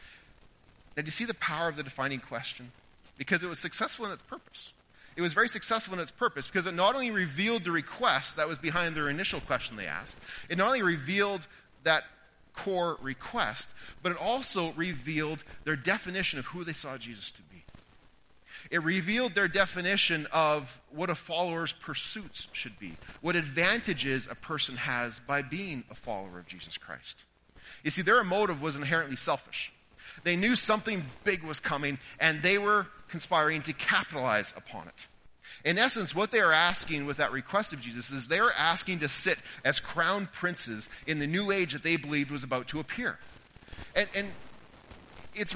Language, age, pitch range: English, 30-49, 145-195 Hz